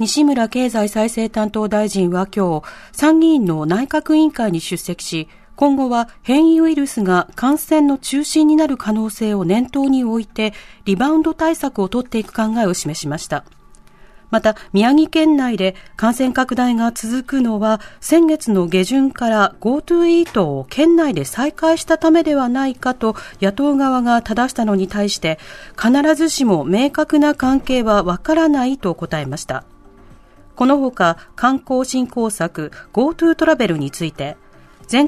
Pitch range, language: 200-280 Hz, Japanese